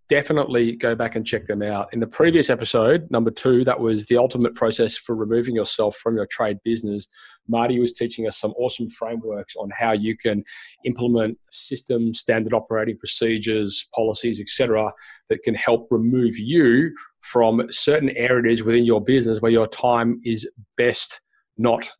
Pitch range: 105-120 Hz